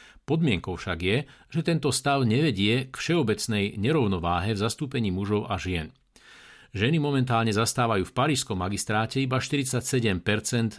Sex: male